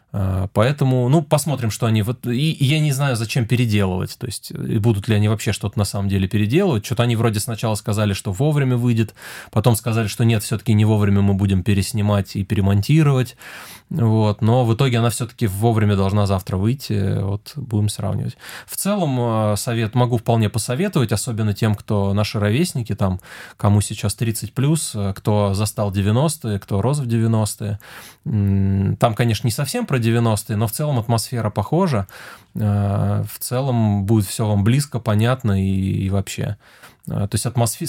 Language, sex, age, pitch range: Russian, male, 20-39, 105-125 Hz